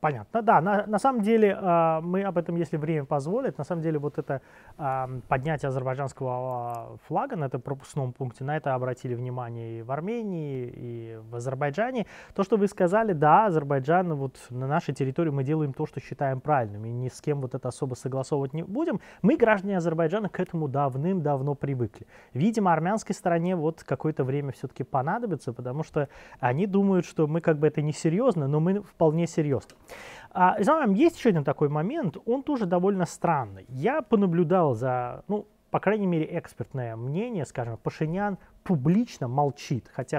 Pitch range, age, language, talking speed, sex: 135-190 Hz, 20-39, Russian, 170 wpm, male